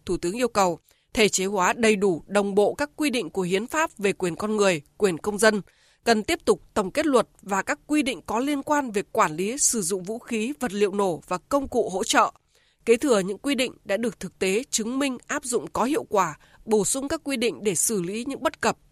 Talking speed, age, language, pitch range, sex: 250 wpm, 20-39, Vietnamese, 190-255 Hz, female